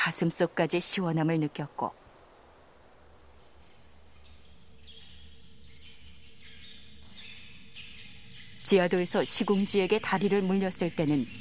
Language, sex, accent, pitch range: Korean, female, native, 125-185 Hz